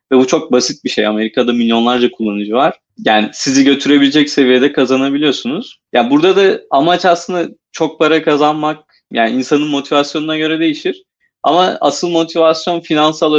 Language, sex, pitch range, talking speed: Turkish, male, 115-145 Hz, 150 wpm